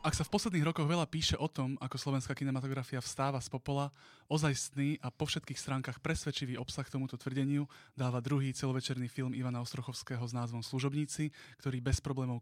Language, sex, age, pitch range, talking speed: Slovak, male, 20-39, 125-140 Hz, 175 wpm